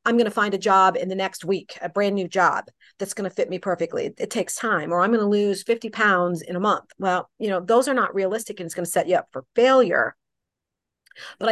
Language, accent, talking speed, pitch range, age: English, American, 260 wpm, 170-210 Hz, 40-59